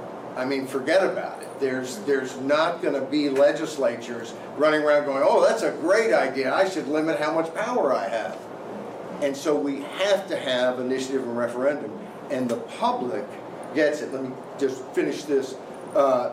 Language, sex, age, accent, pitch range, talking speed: English, male, 50-69, American, 130-160 Hz, 175 wpm